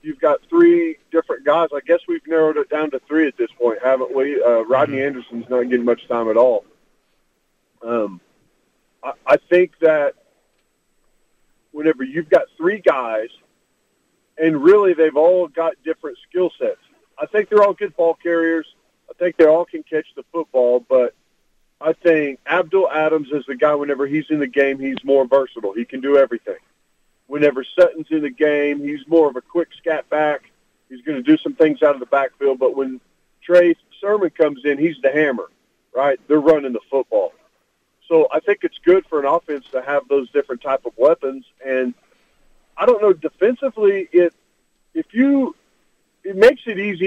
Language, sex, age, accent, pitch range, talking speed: English, male, 40-59, American, 140-180 Hz, 180 wpm